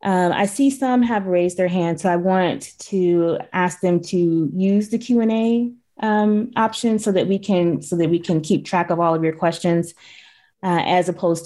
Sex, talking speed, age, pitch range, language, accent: female, 210 wpm, 20-39, 165-200 Hz, English, American